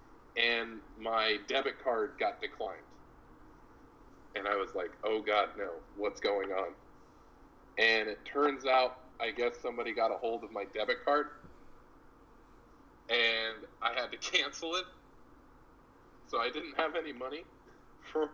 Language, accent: English, American